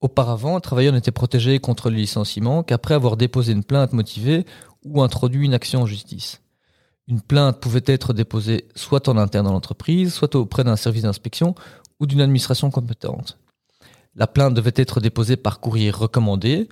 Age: 40-59